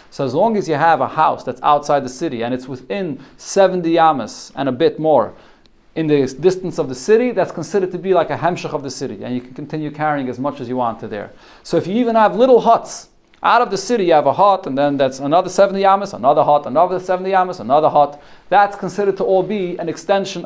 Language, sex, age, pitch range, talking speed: English, male, 40-59, 140-185 Hz, 245 wpm